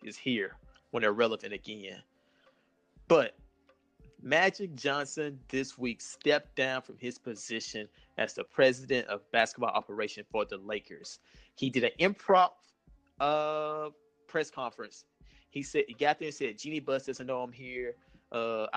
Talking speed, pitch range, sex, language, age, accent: 145 wpm, 125-150 Hz, male, English, 30-49, American